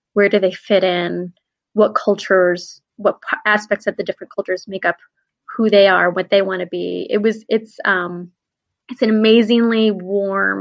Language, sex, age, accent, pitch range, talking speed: English, female, 20-39, American, 185-220 Hz, 180 wpm